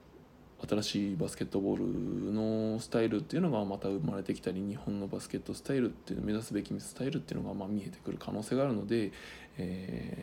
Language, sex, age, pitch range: Japanese, male, 20-39, 100-130 Hz